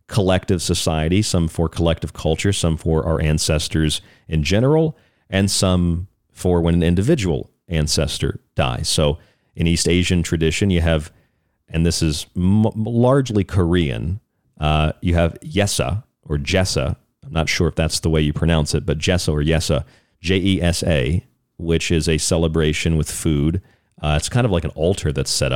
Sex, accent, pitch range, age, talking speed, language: male, American, 80-95 Hz, 40-59, 160 wpm, English